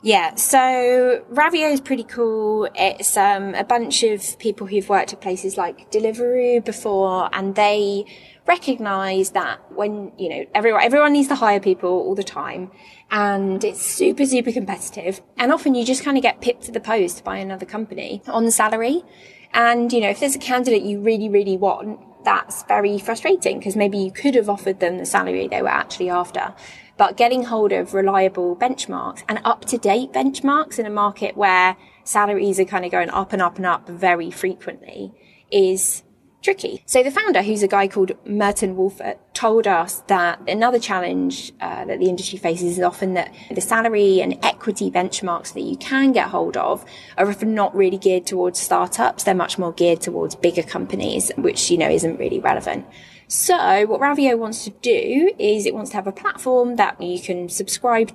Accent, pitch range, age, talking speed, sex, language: British, 190-245 Hz, 20-39, 185 wpm, female, English